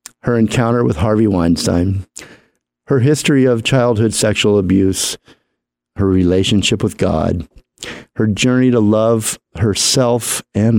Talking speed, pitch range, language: 115 wpm, 85-110 Hz, English